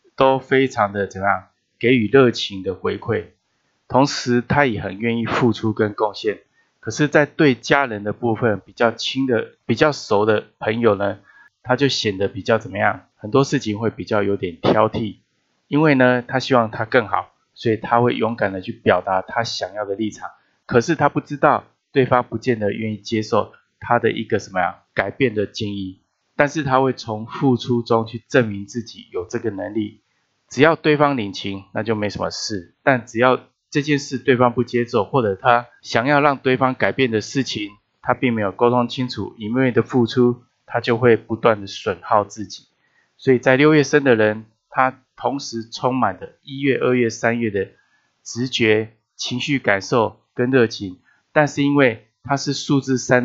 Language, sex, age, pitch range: Chinese, male, 20-39, 105-135 Hz